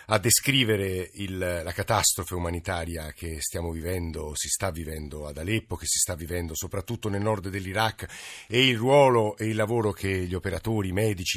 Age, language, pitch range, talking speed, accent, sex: 50-69, Italian, 105-130 Hz, 170 wpm, native, male